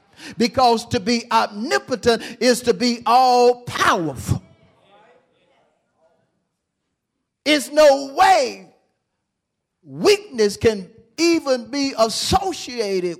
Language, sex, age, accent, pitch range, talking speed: English, male, 50-69, American, 185-275 Hz, 75 wpm